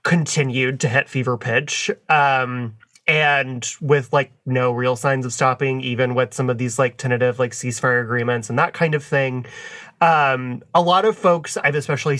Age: 20-39